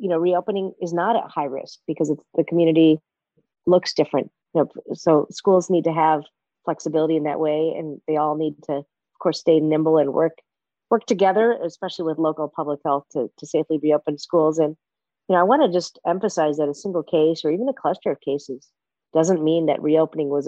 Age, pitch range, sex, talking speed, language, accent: 40-59, 155-190 Hz, female, 210 wpm, English, American